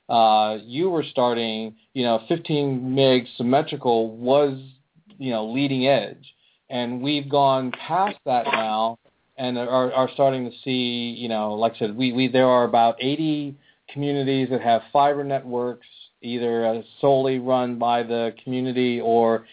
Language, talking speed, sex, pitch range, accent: English, 150 wpm, male, 115-135 Hz, American